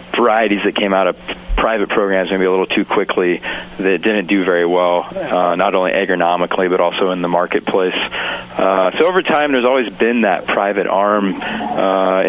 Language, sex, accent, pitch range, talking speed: English, male, American, 90-100 Hz, 180 wpm